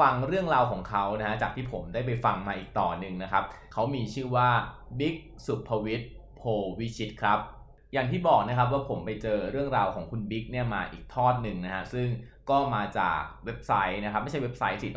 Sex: male